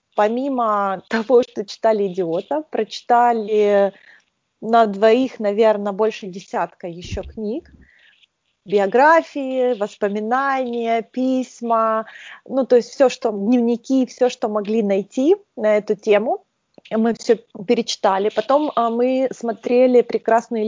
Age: 20-39